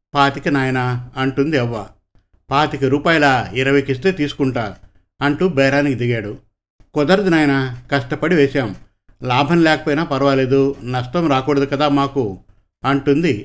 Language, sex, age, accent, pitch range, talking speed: Telugu, male, 50-69, native, 125-155 Hz, 105 wpm